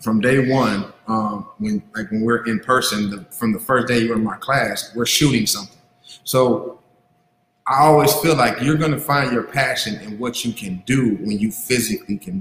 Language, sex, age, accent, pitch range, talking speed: English, male, 30-49, American, 115-145 Hz, 205 wpm